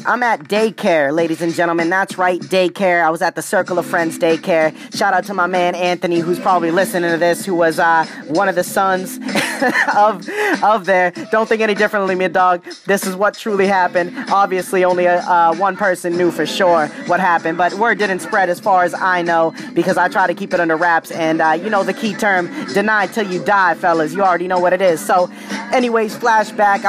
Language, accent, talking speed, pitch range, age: English, American, 215 wpm, 175-205 Hz, 20-39